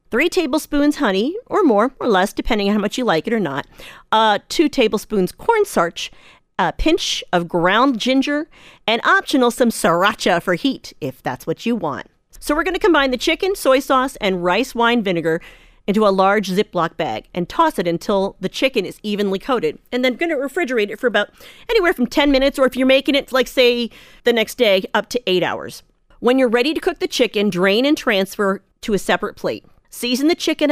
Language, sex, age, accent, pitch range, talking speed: English, female, 40-59, American, 190-275 Hz, 210 wpm